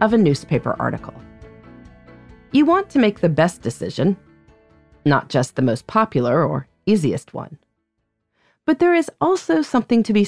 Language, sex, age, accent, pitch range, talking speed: English, female, 40-59, American, 135-215 Hz, 150 wpm